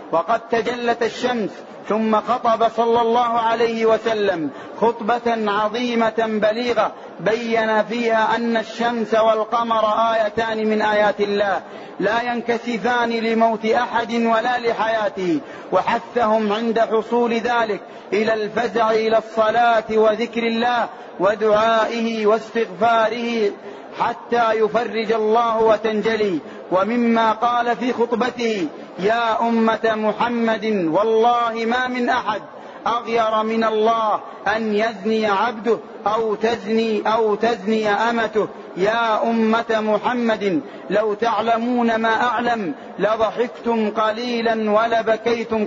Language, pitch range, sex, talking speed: Arabic, 220-235 Hz, male, 100 wpm